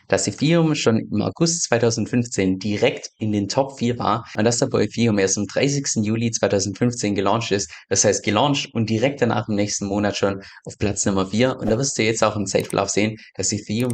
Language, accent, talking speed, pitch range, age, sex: German, German, 205 wpm, 100-120 Hz, 20-39, male